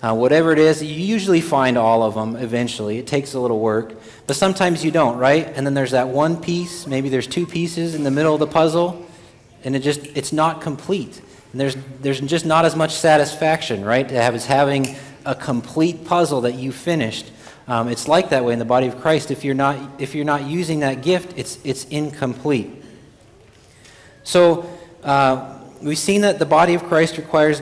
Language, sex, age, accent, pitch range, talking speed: English, male, 30-49, American, 130-155 Hz, 205 wpm